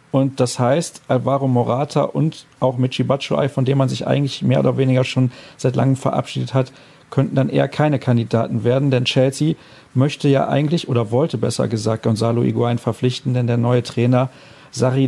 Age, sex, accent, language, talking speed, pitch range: 40-59, male, German, German, 180 wpm, 125-150 Hz